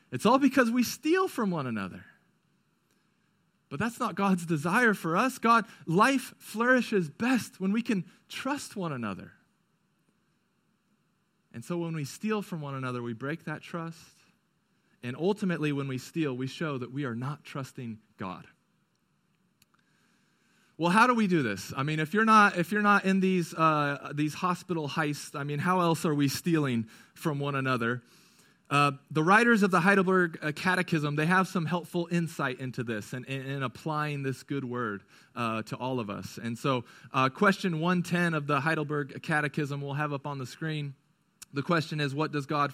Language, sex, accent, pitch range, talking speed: English, male, American, 135-185 Hz, 180 wpm